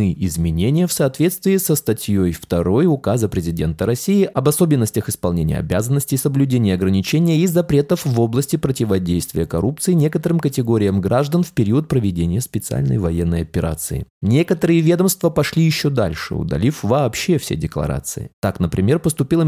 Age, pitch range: 20-39, 95-155 Hz